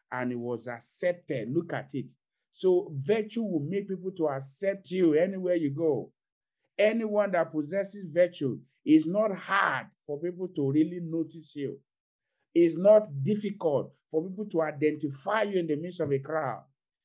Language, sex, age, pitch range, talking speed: English, male, 50-69, 145-190 Hz, 160 wpm